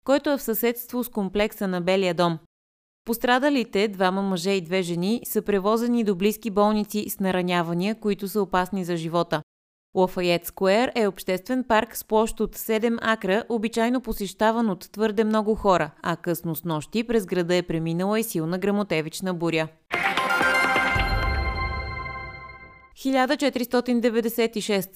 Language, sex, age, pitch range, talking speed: Bulgarian, female, 20-39, 175-225 Hz, 135 wpm